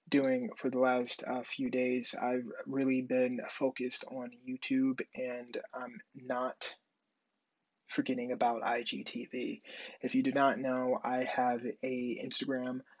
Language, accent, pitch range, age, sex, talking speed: English, American, 125-135 Hz, 20-39, male, 130 wpm